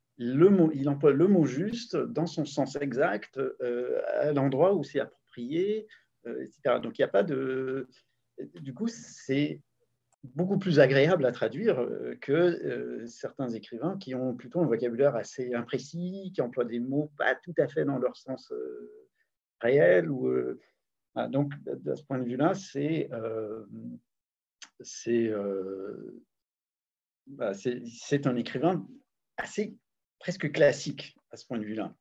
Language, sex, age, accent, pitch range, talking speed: French, male, 50-69, French, 120-175 Hz, 155 wpm